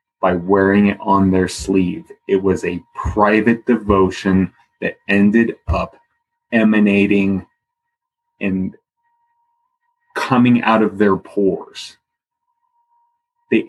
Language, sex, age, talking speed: English, male, 30-49, 95 wpm